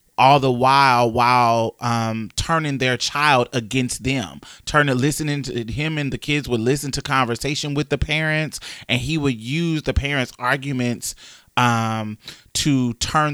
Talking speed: 155 wpm